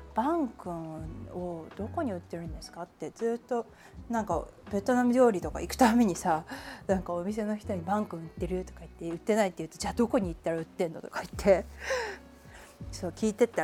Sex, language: female, Japanese